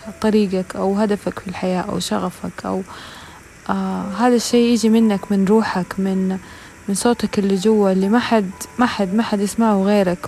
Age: 20-39